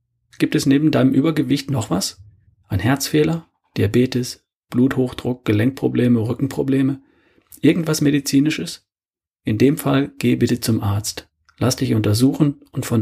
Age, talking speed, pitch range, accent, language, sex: 40-59, 125 wpm, 105-140 Hz, German, German, male